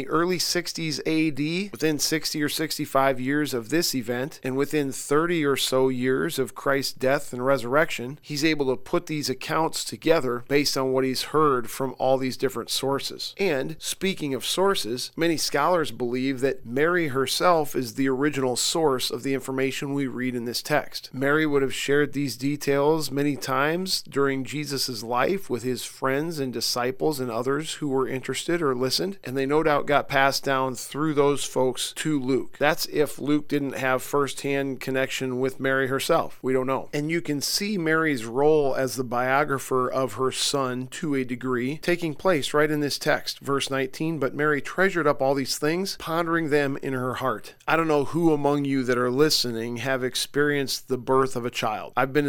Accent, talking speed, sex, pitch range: American, 185 wpm, male, 130-150 Hz